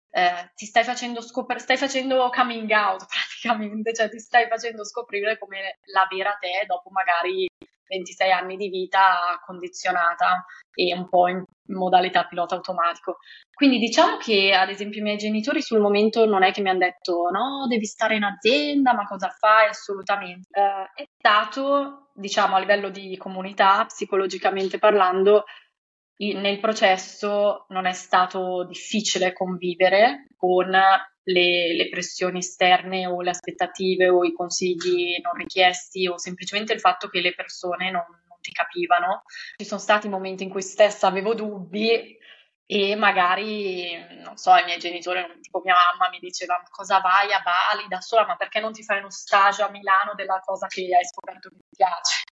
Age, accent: 20-39, native